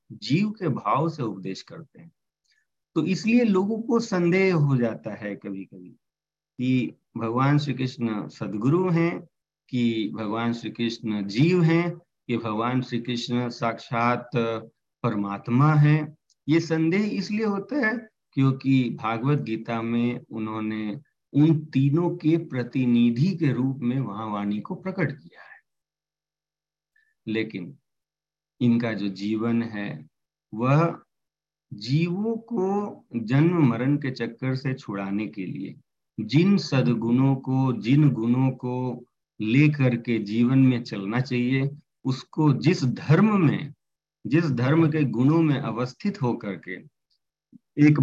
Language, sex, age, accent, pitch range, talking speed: Hindi, male, 40-59, native, 120-155 Hz, 115 wpm